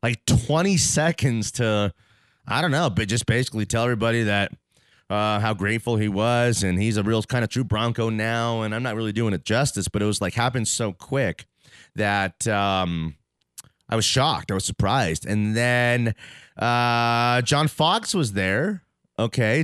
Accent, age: American, 30-49